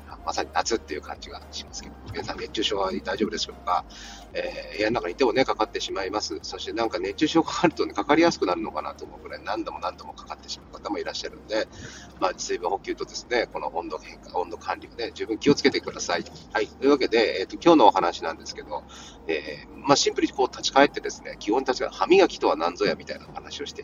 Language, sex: Japanese, male